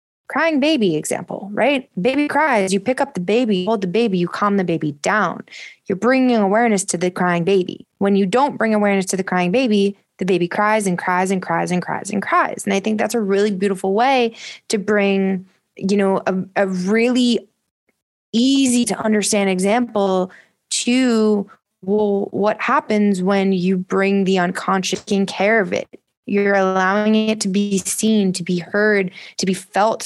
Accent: American